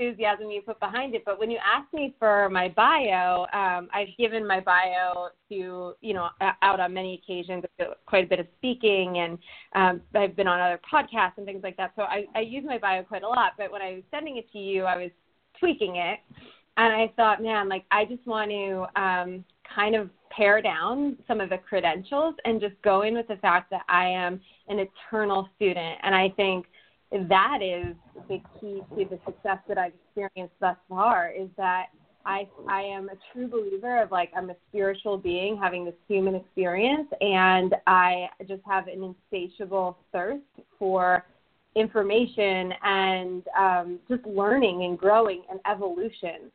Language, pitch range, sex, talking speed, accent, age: English, 180-210 Hz, female, 185 wpm, American, 20-39